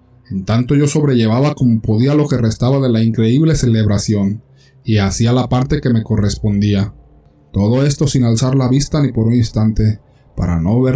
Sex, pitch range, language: male, 105-135 Hz, Spanish